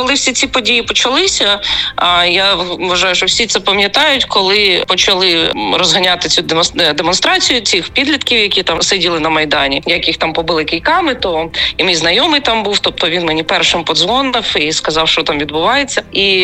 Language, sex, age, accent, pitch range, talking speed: Ukrainian, female, 20-39, native, 170-240 Hz, 160 wpm